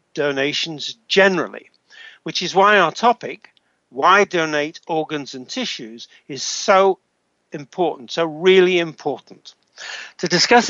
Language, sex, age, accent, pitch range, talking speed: English, male, 60-79, British, 145-190 Hz, 110 wpm